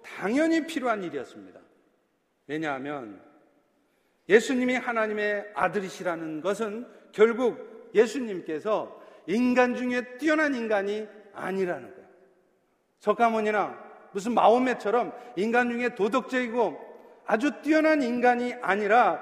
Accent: native